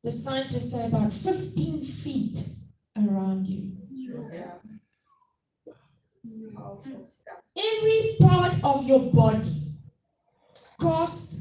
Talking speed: 75 wpm